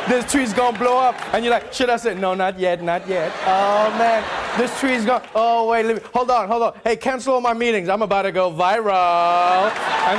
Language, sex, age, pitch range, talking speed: English, male, 20-39, 175-230 Hz, 245 wpm